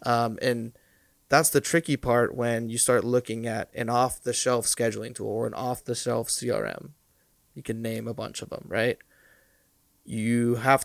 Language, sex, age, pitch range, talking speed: English, male, 20-39, 120-130 Hz, 185 wpm